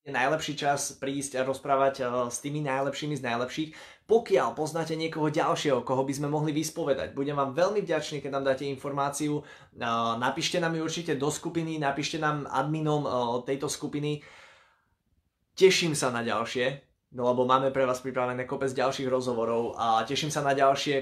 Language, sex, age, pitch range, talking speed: Slovak, male, 20-39, 135-155 Hz, 160 wpm